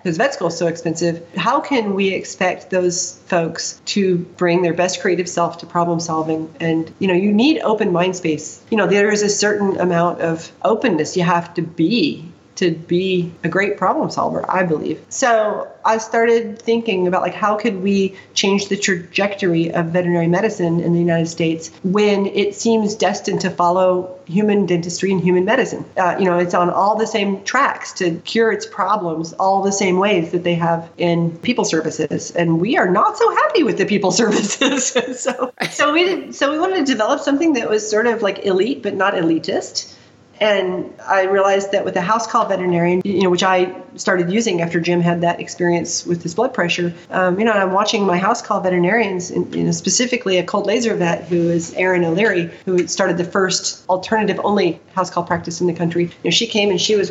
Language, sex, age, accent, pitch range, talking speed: English, female, 40-59, American, 175-215 Hz, 205 wpm